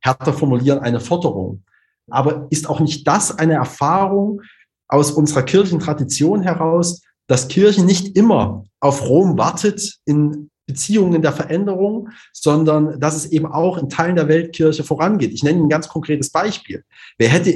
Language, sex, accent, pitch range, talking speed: German, male, German, 135-180 Hz, 155 wpm